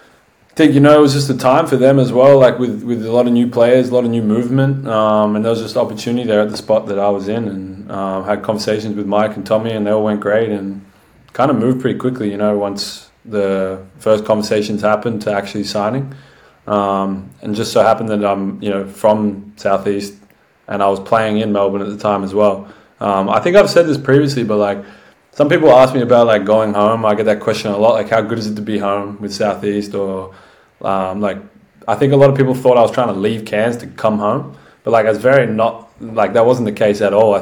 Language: English